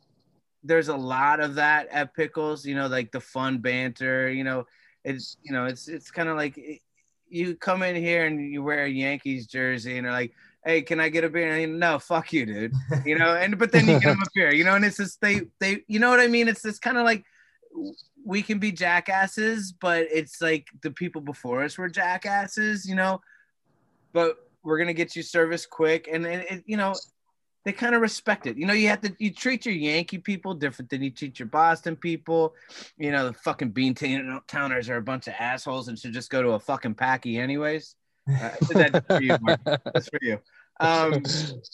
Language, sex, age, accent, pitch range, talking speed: English, male, 30-49, American, 130-180 Hz, 220 wpm